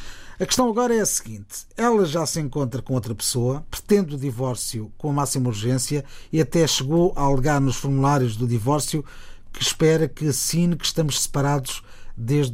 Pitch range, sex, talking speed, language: 125-165 Hz, male, 175 wpm, Portuguese